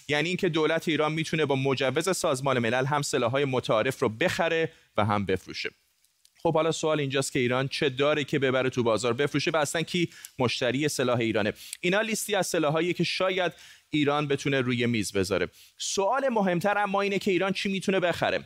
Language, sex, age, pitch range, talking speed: Persian, male, 30-49, 120-155 Hz, 180 wpm